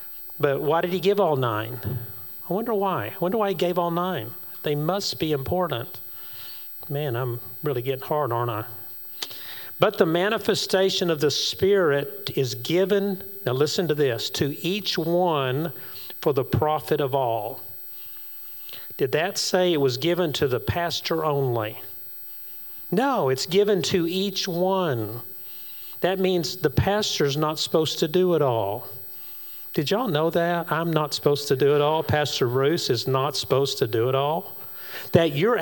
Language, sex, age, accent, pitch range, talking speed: English, male, 50-69, American, 125-175 Hz, 160 wpm